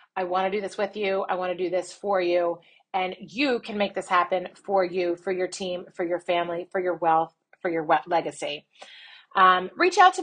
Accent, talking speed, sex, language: American, 230 wpm, female, English